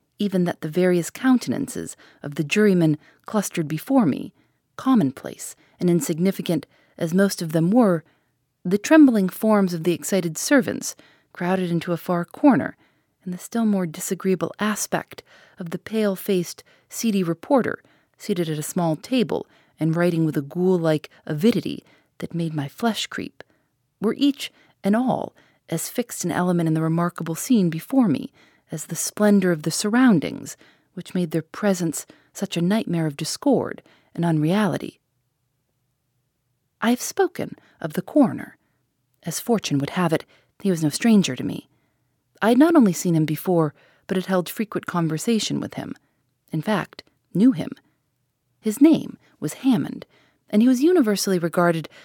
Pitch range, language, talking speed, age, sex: 160-210 Hz, English, 155 wpm, 40-59, female